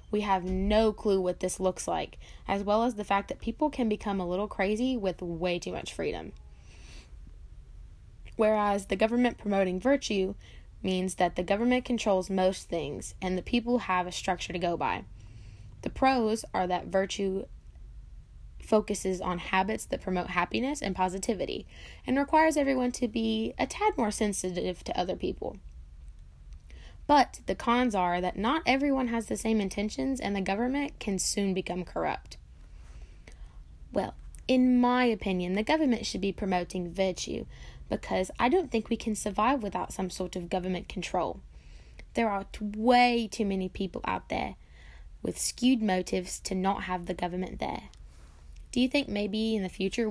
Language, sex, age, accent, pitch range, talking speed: English, female, 10-29, American, 175-225 Hz, 165 wpm